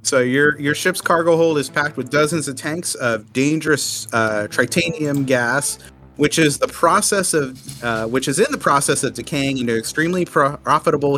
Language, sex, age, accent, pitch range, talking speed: English, male, 30-49, American, 120-160 Hz, 185 wpm